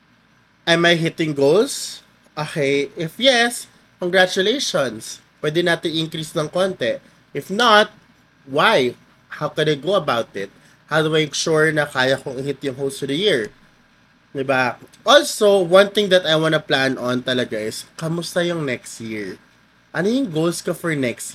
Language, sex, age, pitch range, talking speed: Filipino, male, 20-39, 140-185 Hz, 160 wpm